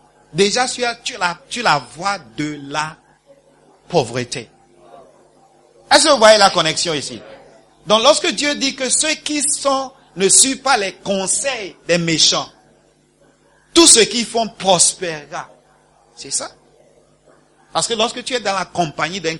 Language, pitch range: English, 155-225 Hz